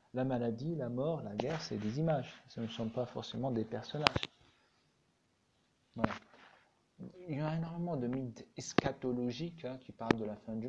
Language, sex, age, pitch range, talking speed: Arabic, male, 40-59, 115-155 Hz, 175 wpm